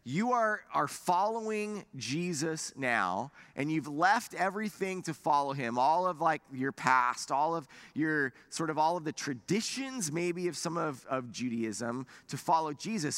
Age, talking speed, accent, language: 30-49, 165 wpm, American, English